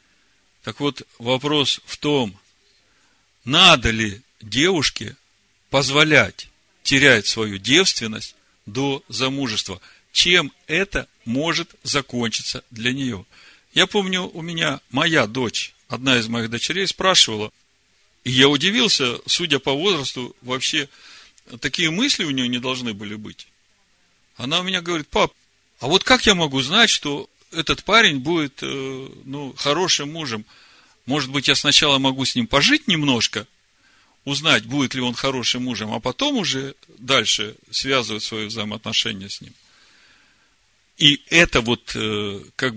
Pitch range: 115-150 Hz